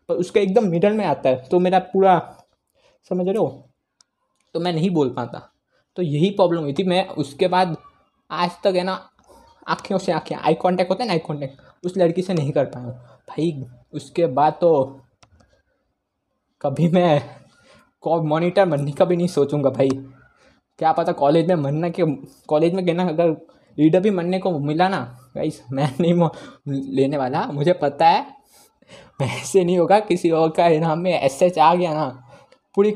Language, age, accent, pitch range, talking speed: Hindi, 20-39, native, 145-185 Hz, 180 wpm